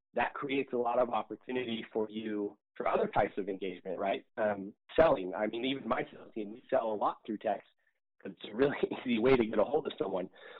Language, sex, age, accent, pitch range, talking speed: English, male, 30-49, American, 110-130 Hz, 220 wpm